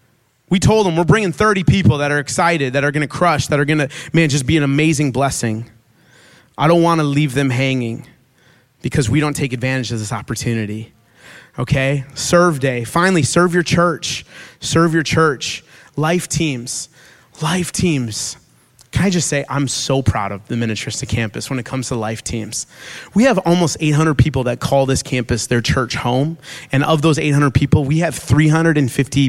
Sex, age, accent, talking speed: male, 30-49, American, 185 wpm